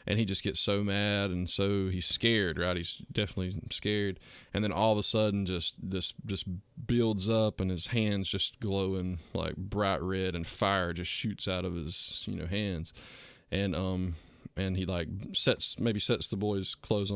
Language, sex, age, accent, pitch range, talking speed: English, male, 20-39, American, 90-105 Hz, 190 wpm